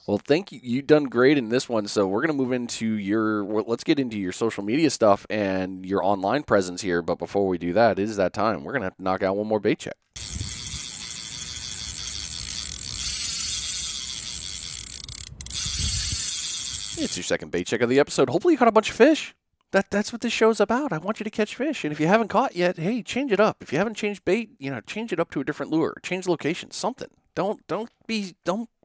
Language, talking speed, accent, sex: English, 225 wpm, American, male